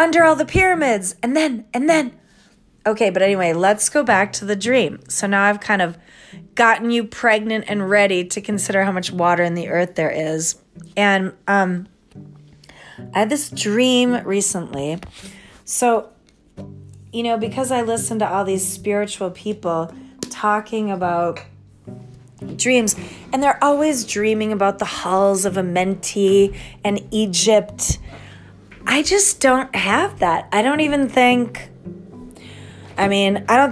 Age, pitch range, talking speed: 30-49, 180-230 Hz, 145 wpm